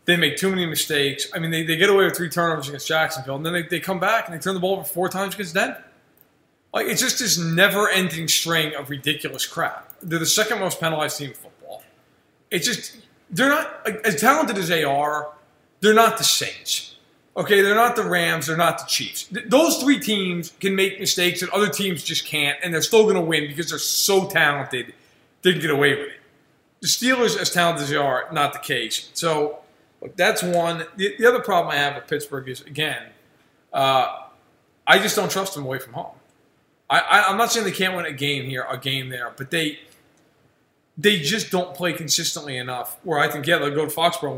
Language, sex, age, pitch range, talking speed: English, male, 20-39, 145-185 Hz, 220 wpm